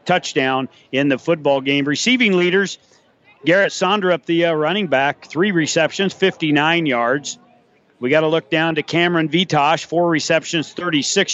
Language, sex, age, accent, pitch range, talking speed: English, male, 50-69, American, 140-180 Hz, 155 wpm